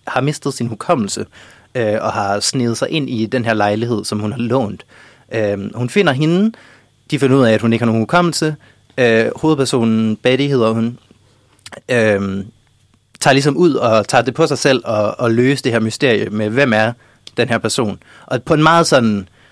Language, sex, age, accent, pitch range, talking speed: Danish, male, 30-49, native, 110-130 Hz, 185 wpm